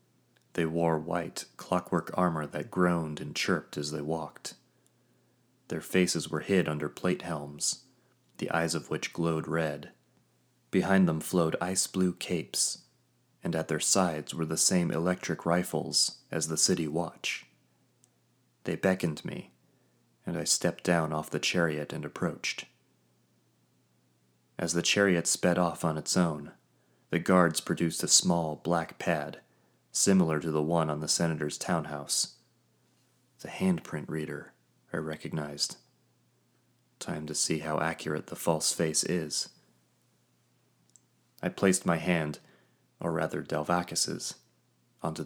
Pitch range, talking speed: 75-85 Hz, 130 wpm